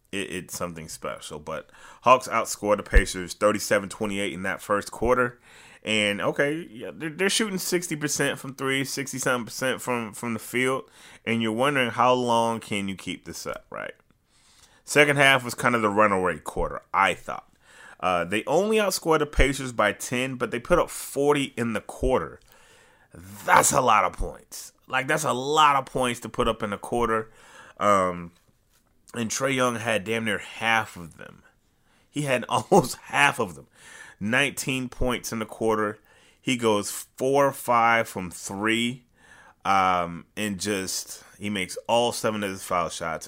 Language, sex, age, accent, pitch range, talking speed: English, male, 30-49, American, 95-130 Hz, 165 wpm